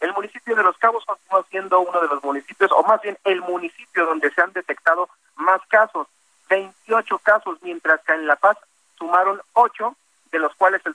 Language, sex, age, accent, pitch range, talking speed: Spanish, male, 50-69, Mexican, 160-200 Hz, 190 wpm